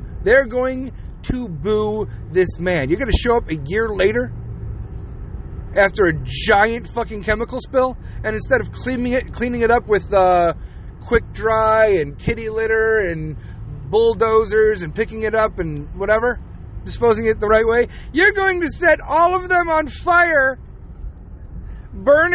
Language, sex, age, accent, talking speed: English, male, 30-49, American, 155 wpm